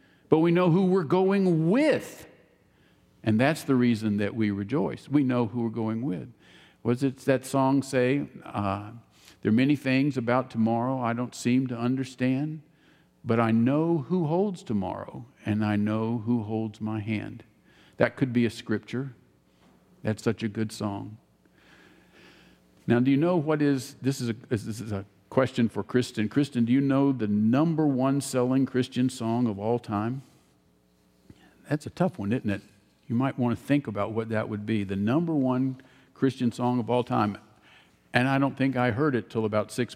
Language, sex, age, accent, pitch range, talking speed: English, male, 50-69, American, 110-140 Hz, 185 wpm